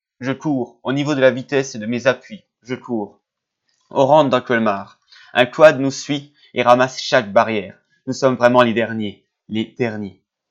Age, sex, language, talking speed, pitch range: 20-39, male, French, 185 wpm, 120-145 Hz